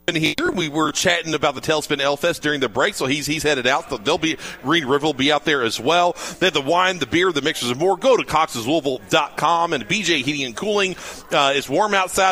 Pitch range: 145-190 Hz